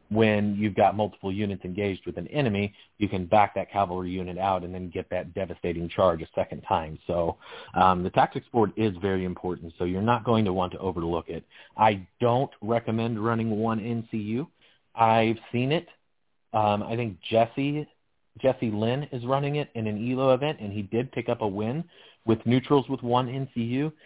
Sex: male